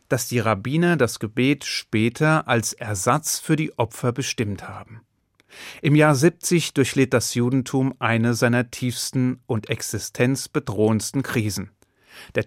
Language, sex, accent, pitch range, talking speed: German, male, German, 115-150 Hz, 125 wpm